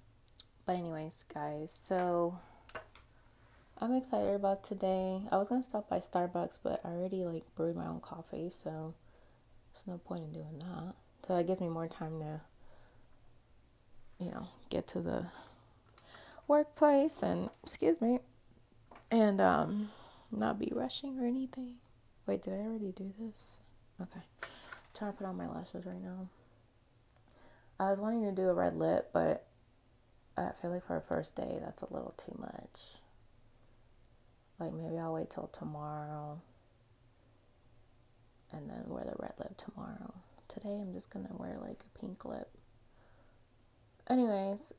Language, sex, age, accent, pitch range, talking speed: English, female, 20-39, American, 120-190 Hz, 155 wpm